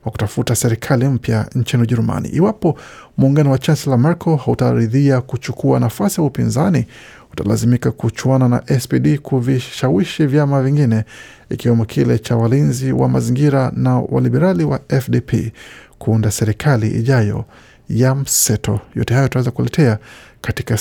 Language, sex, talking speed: Swahili, male, 125 wpm